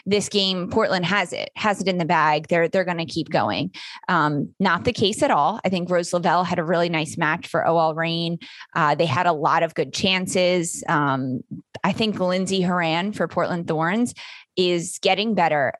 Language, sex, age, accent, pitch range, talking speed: English, female, 20-39, American, 165-215 Hz, 200 wpm